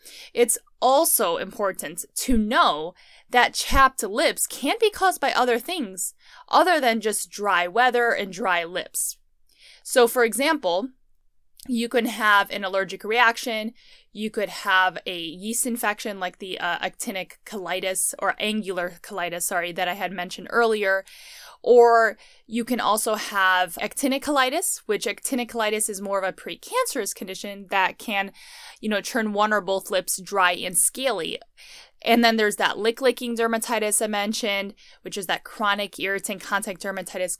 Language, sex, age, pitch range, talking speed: English, female, 10-29, 190-245 Hz, 150 wpm